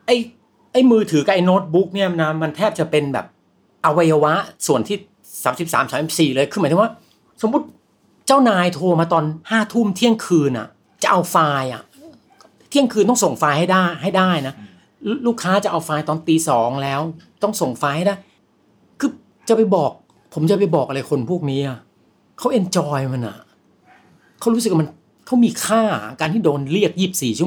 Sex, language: male, Thai